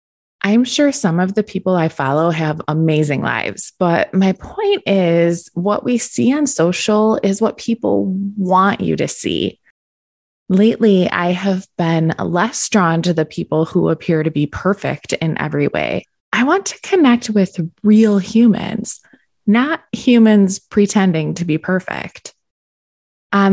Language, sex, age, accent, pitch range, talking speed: English, female, 20-39, American, 165-215 Hz, 150 wpm